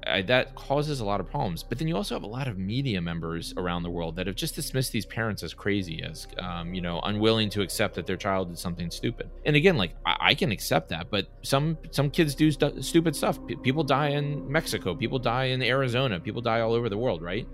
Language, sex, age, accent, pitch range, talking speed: English, male, 30-49, American, 90-130 Hz, 250 wpm